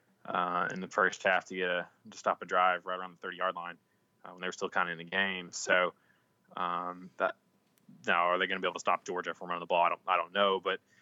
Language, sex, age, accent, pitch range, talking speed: English, male, 20-39, American, 90-100 Hz, 280 wpm